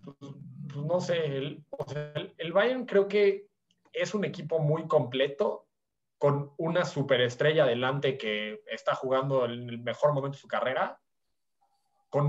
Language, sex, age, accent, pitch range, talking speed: Spanish, male, 20-39, Mexican, 130-165 Hz, 130 wpm